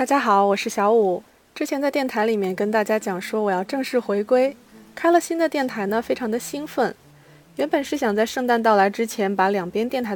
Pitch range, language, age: 200-255 Hz, Chinese, 20-39